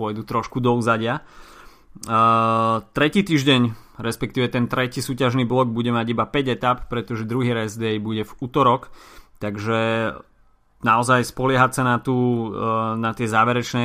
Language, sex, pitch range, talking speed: Slovak, male, 110-125 Hz, 145 wpm